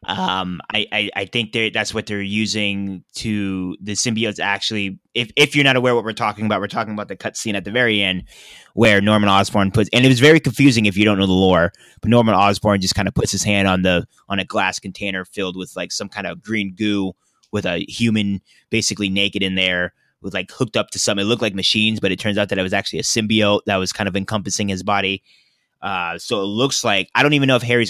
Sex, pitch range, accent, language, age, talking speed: male, 95-110 Hz, American, English, 20-39, 245 wpm